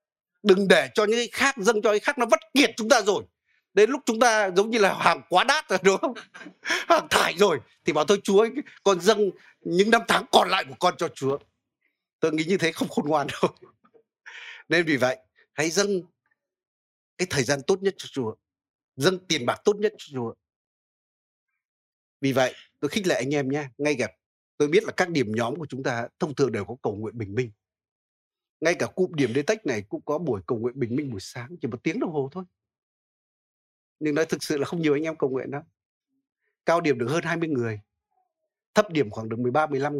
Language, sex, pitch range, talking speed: Vietnamese, male, 125-195 Hz, 220 wpm